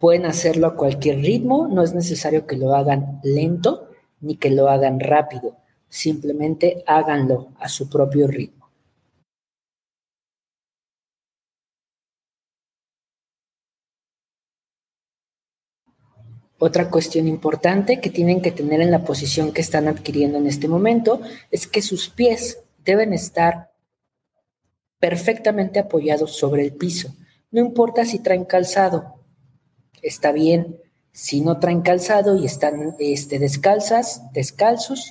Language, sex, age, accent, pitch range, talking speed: Spanish, female, 40-59, Mexican, 145-185 Hz, 115 wpm